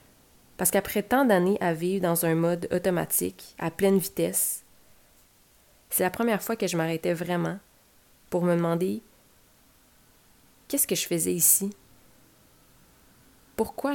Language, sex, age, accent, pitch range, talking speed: French, female, 30-49, Canadian, 170-195 Hz, 130 wpm